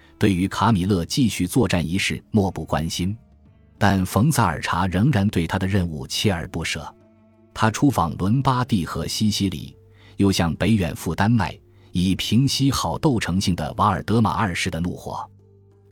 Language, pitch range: Chinese, 85-110 Hz